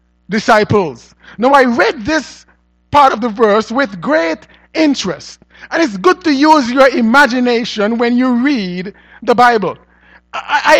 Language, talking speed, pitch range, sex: English, 140 wpm, 225-305 Hz, male